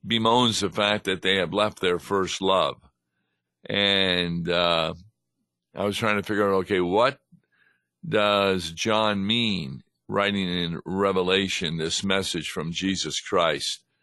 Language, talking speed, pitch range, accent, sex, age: English, 135 wpm, 90-105 Hz, American, male, 50-69